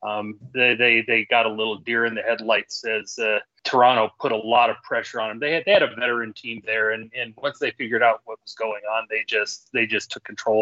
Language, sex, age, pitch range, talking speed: English, male, 30-49, 110-145 Hz, 255 wpm